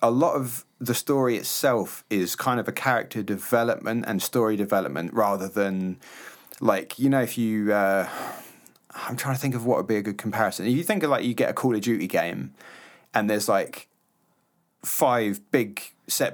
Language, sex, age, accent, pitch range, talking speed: English, male, 30-49, British, 95-115 Hz, 190 wpm